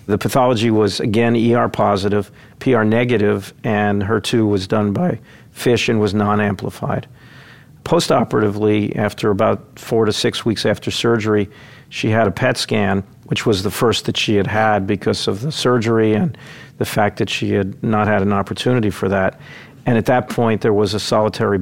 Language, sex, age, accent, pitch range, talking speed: English, male, 50-69, American, 105-120 Hz, 175 wpm